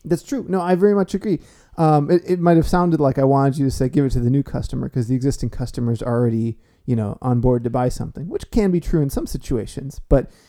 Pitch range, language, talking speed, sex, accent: 125-160 Hz, English, 255 wpm, male, American